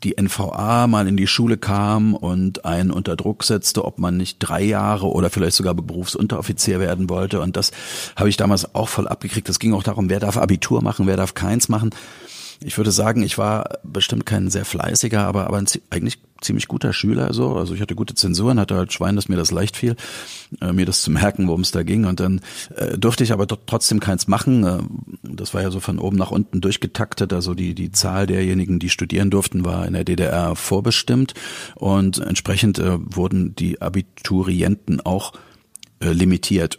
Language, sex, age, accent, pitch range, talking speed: German, male, 40-59, German, 95-115 Hz, 200 wpm